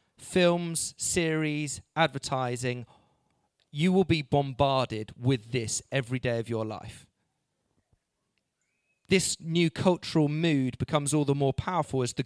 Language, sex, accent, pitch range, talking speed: English, male, British, 120-160 Hz, 120 wpm